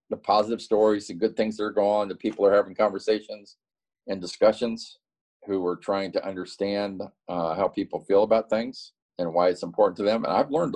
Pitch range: 90-110 Hz